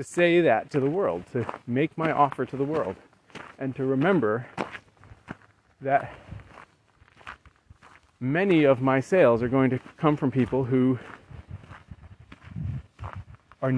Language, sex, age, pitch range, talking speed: English, male, 30-49, 115-145 Hz, 125 wpm